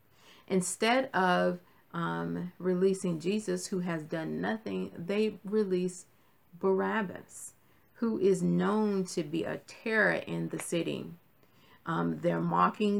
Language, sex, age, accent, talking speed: English, female, 40-59, American, 115 wpm